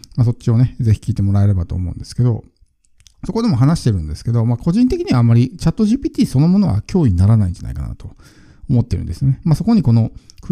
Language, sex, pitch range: Japanese, male, 100-140 Hz